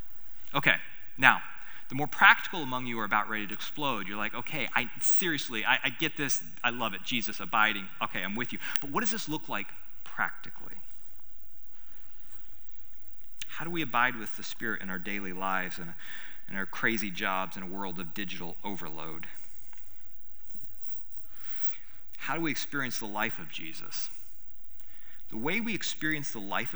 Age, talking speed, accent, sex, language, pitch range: 30-49, 165 wpm, American, male, English, 110-165 Hz